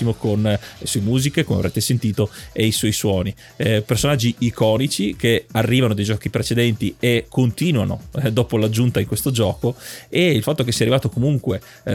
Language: Italian